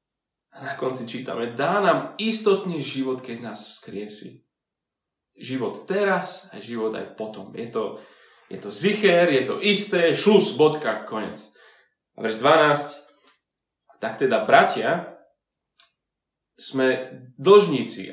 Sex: male